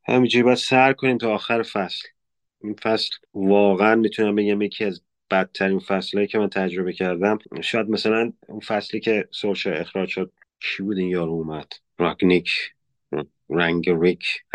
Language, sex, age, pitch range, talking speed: Persian, male, 30-49, 90-105 Hz, 145 wpm